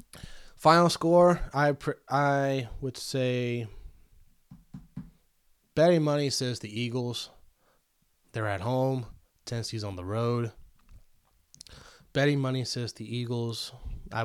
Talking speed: 105 wpm